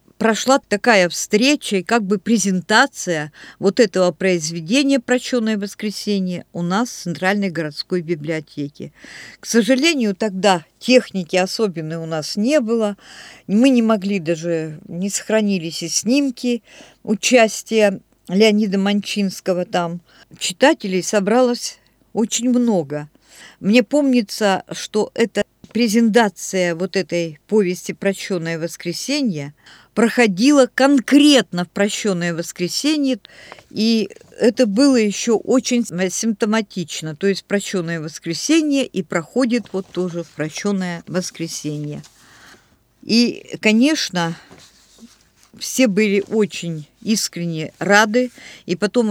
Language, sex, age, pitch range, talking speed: Russian, female, 50-69, 175-235 Hz, 105 wpm